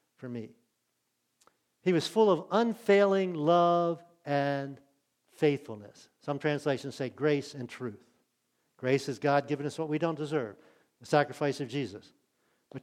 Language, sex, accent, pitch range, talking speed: English, male, American, 135-170 Hz, 140 wpm